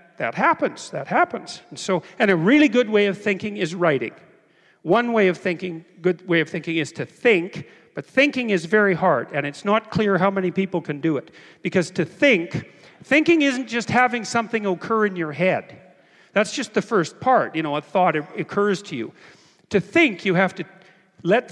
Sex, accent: male, American